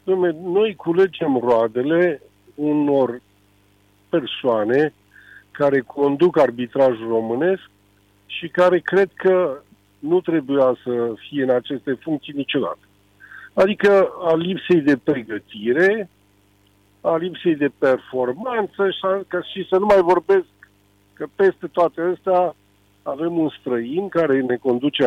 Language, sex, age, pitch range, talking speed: Romanian, male, 50-69, 115-180 Hz, 110 wpm